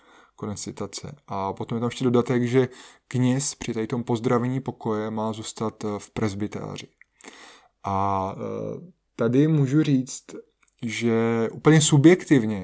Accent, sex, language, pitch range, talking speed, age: native, male, Czech, 110-125 Hz, 110 wpm, 20-39